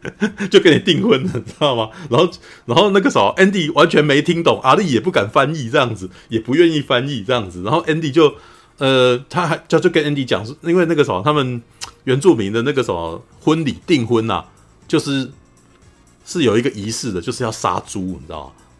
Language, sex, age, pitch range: Chinese, male, 30-49, 100-145 Hz